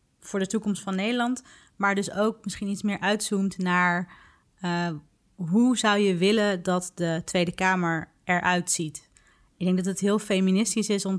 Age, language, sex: 30-49, Dutch, female